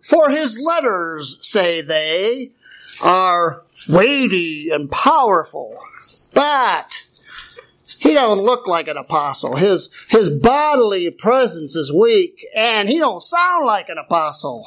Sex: male